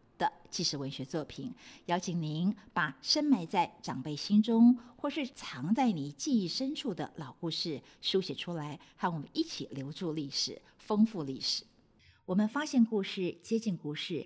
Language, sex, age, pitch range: Chinese, female, 50-69, 165-230 Hz